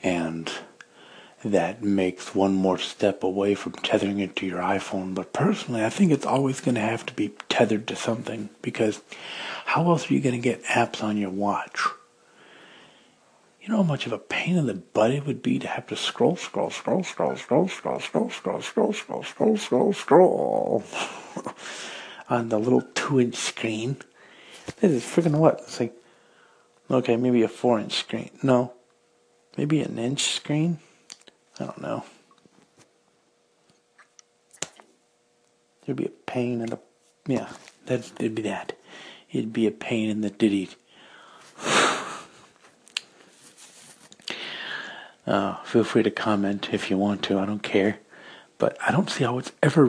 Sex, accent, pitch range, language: male, American, 100-130 Hz, English